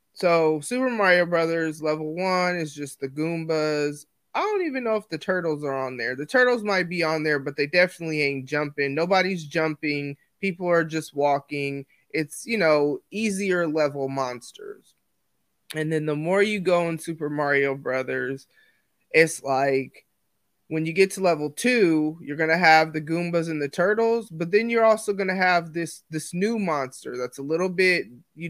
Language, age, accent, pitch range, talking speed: English, 20-39, American, 145-175 Hz, 180 wpm